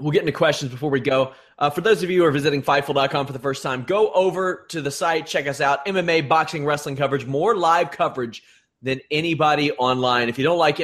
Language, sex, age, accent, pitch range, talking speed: English, male, 30-49, American, 130-155 Hz, 235 wpm